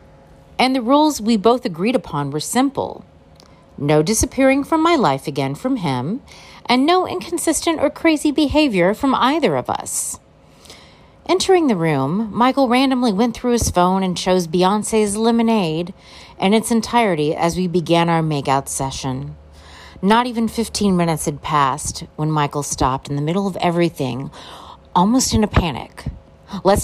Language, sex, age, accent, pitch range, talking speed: English, female, 40-59, American, 155-235 Hz, 150 wpm